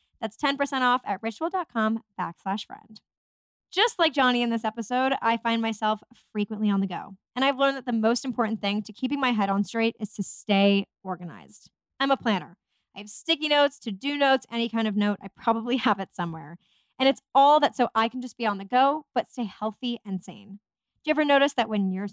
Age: 10-29